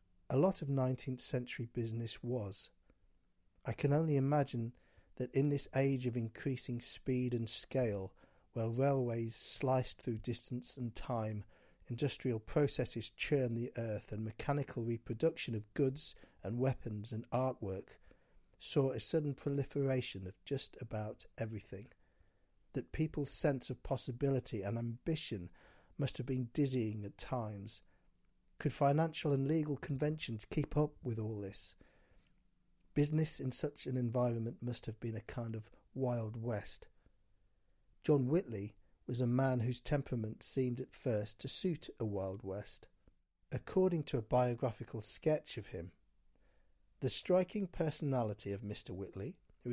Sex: male